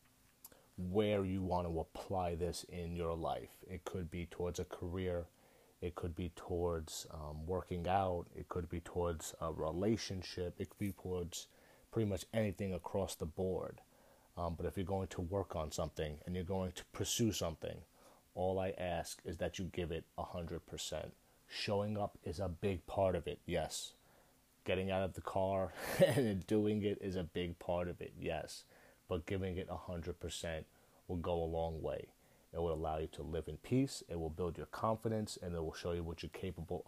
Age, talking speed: 30-49, 190 wpm